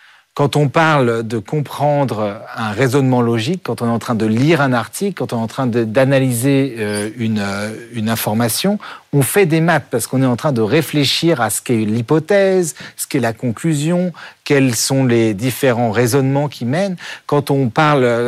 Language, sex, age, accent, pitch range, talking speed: French, male, 40-59, French, 120-155 Hz, 175 wpm